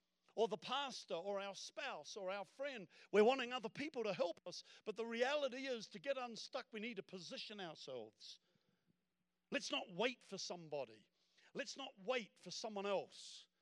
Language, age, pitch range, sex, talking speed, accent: English, 50-69, 150-210 Hz, male, 170 wpm, British